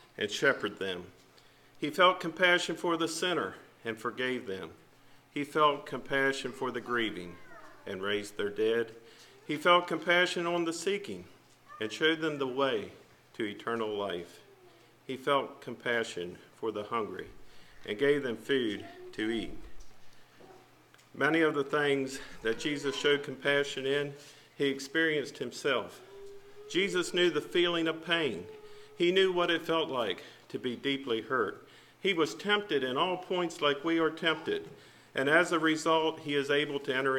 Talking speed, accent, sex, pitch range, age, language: 155 wpm, American, male, 125-165 Hz, 50-69, English